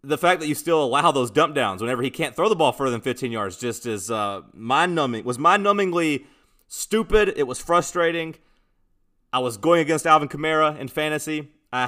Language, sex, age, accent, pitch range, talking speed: English, male, 30-49, American, 110-135 Hz, 200 wpm